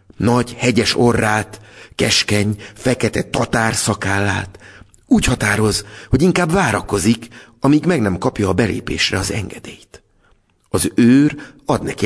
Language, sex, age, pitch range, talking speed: Hungarian, male, 60-79, 90-120 Hz, 120 wpm